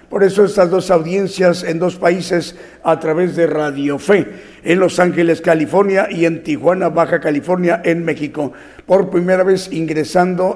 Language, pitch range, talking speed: Italian, 165-185 Hz, 160 wpm